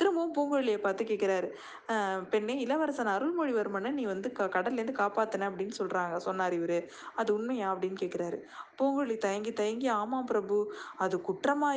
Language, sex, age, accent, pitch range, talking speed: Tamil, female, 20-39, native, 210-280 Hz, 55 wpm